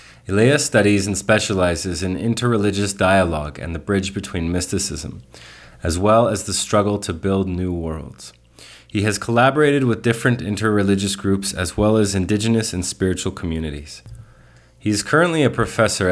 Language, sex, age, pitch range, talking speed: English, male, 30-49, 90-110 Hz, 150 wpm